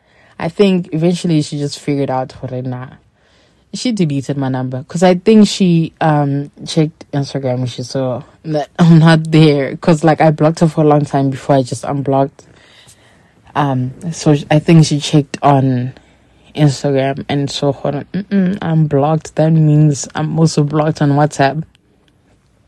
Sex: female